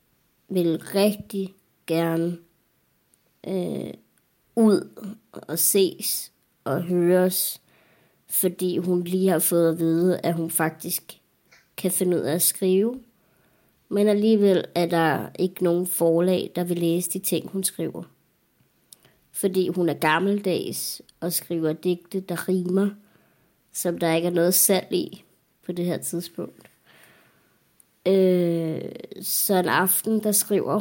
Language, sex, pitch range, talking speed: Danish, male, 170-195 Hz, 125 wpm